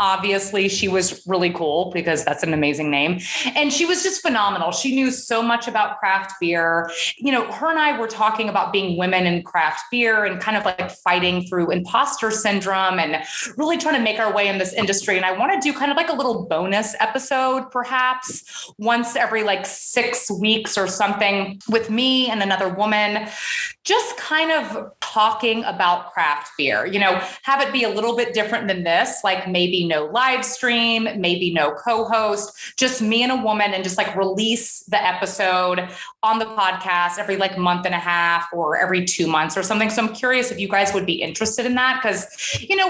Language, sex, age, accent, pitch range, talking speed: English, female, 30-49, American, 185-245 Hz, 200 wpm